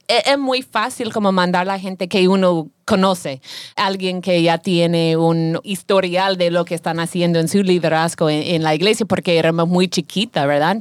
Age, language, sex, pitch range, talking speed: 30-49, English, female, 175-205 Hz, 190 wpm